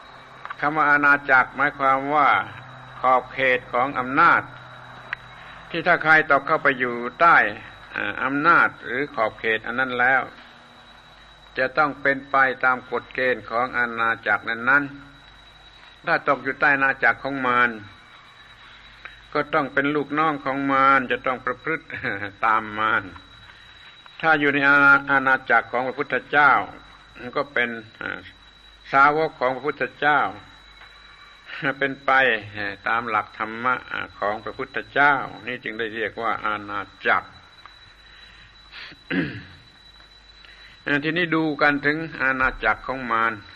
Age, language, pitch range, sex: 60-79, Thai, 115-145 Hz, male